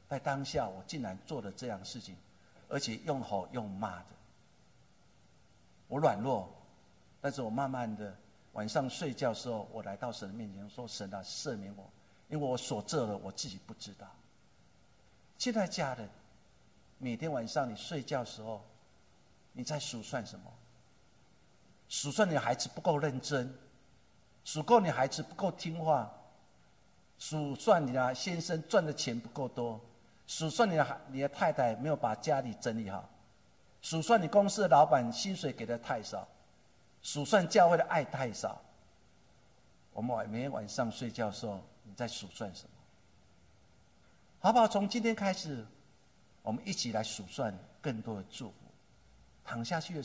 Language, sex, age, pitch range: Chinese, male, 60-79, 105-150 Hz